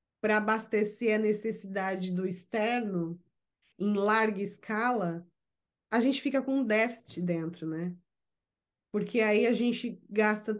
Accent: Brazilian